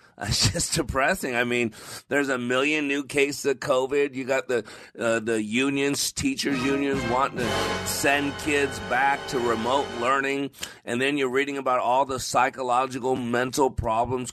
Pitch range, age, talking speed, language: 115-145 Hz, 40-59, 160 wpm, English